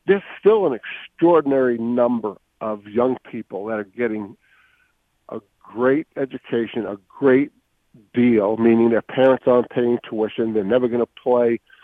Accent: American